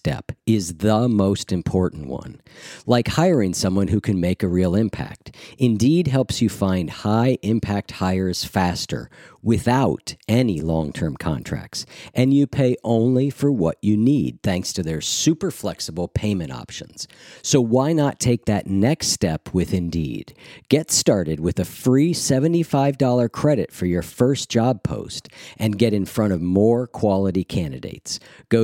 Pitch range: 95-130 Hz